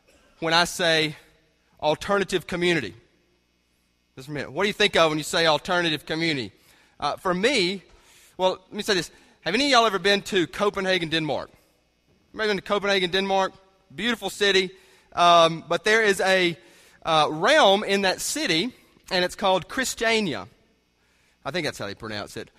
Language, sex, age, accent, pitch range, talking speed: English, male, 30-49, American, 160-200 Hz, 165 wpm